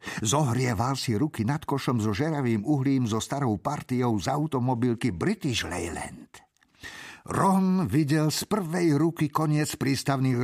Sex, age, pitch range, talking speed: male, 50-69, 115-150 Hz, 125 wpm